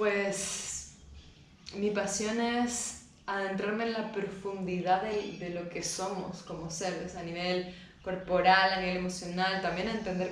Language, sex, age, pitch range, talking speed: English, female, 20-39, 180-195 Hz, 140 wpm